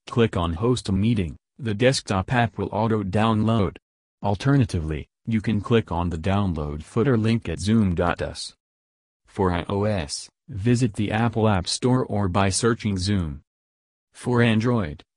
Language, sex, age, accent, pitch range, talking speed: English, male, 40-59, American, 80-110 Hz, 135 wpm